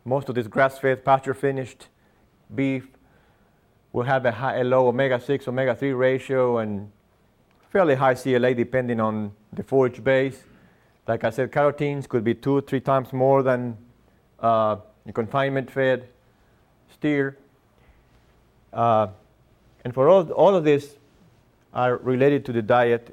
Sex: male